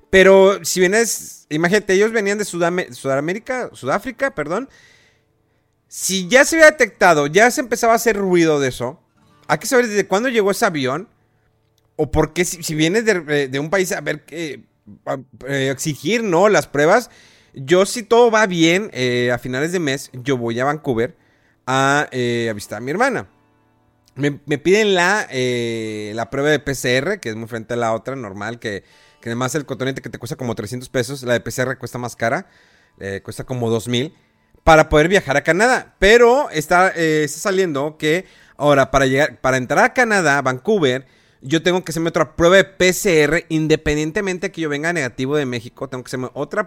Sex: male